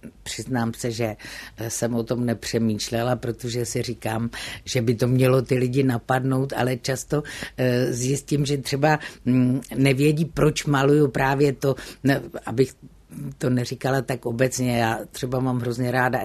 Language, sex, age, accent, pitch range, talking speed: Czech, female, 50-69, native, 115-135 Hz, 135 wpm